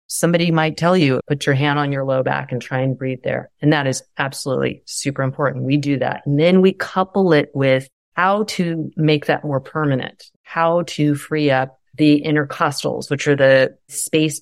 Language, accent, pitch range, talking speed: English, American, 135-160 Hz, 195 wpm